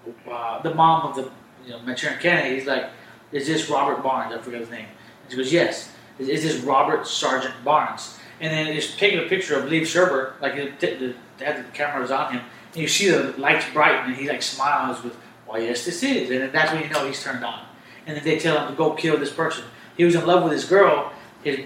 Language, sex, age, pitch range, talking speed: English, male, 30-49, 135-170 Hz, 245 wpm